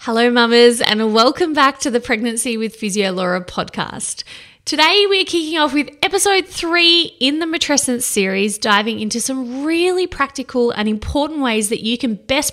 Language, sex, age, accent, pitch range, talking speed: English, female, 20-39, Australian, 225-320 Hz, 170 wpm